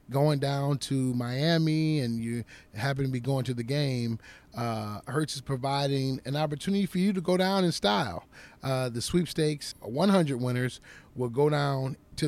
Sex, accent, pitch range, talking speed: male, American, 115-140 Hz, 170 wpm